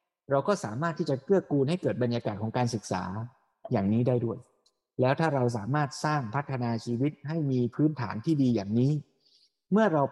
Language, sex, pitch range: Thai, male, 115-150 Hz